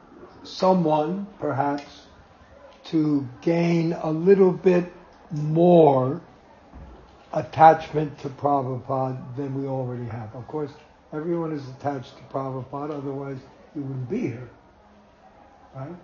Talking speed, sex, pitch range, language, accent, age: 105 wpm, male, 135-170 Hz, English, American, 60-79